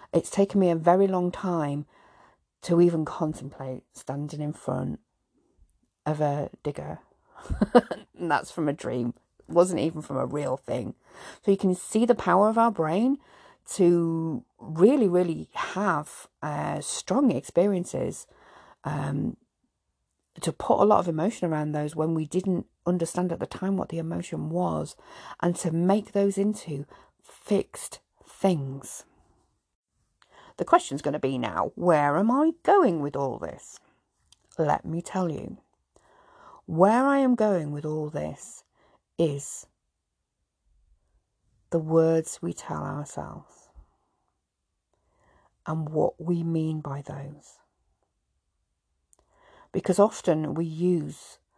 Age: 40-59